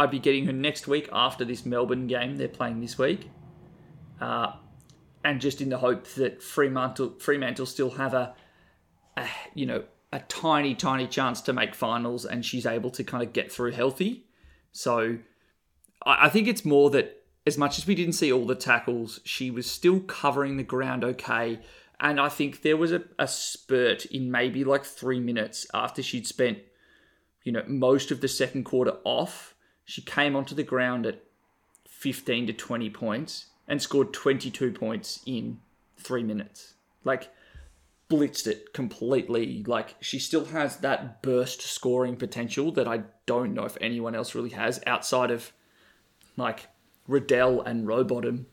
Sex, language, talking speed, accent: male, English, 170 wpm, Australian